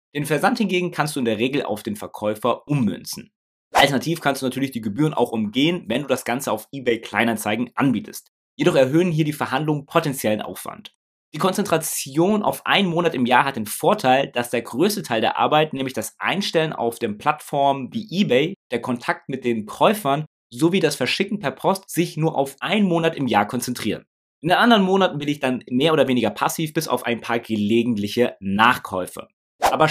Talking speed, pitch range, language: 190 wpm, 125-170 Hz, German